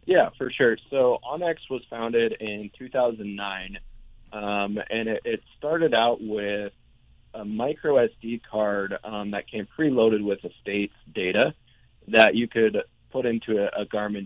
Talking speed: 155 wpm